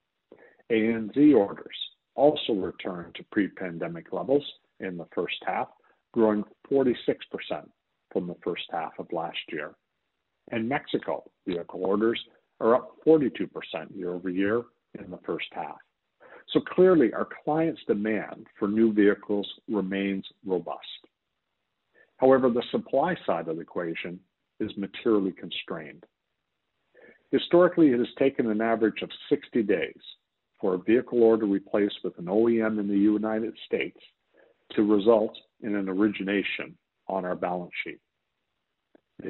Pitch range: 95-120 Hz